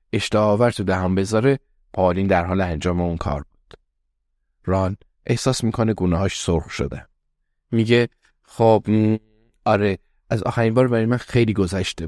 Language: Persian